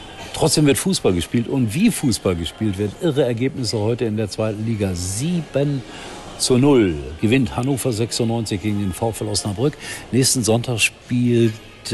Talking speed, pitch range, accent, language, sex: 145 wpm, 95-120 Hz, German, German, male